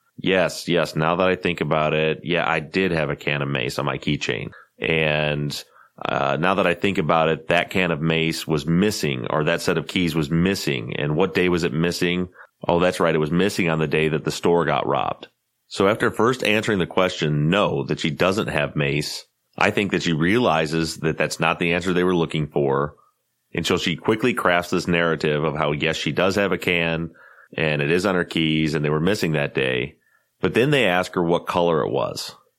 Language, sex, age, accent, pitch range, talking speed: English, male, 30-49, American, 75-85 Hz, 225 wpm